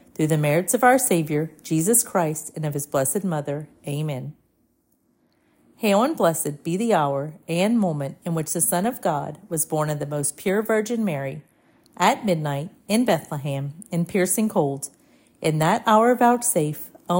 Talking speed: 170 wpm